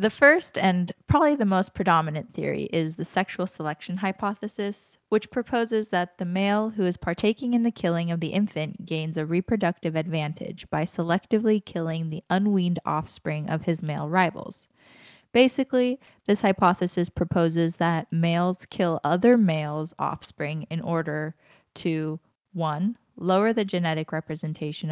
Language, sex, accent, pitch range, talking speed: English, female, American, 160-200 Hz, 140 wpm